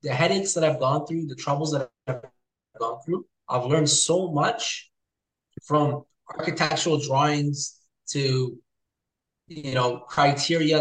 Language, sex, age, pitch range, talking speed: English, male, 20-39, 140-175 Hz, 130 wpm